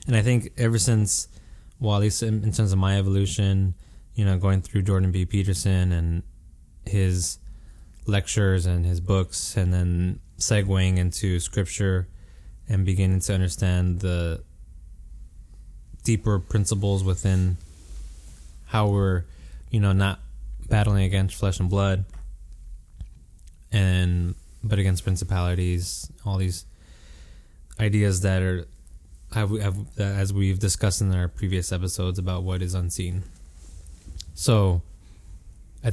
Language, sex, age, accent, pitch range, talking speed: English, male, 20-39, American, 85-100 Hz, 120 wpm